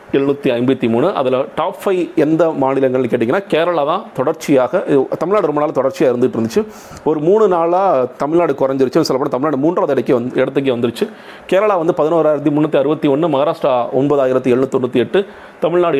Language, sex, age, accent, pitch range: Tamil, male, 30-49, native, 130-165 Hz